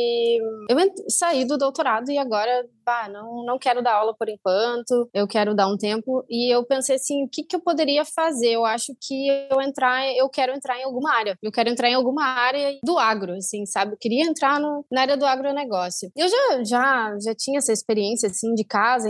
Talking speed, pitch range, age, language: 215 wpm, 225-280 Hz, 20-39, Portuguese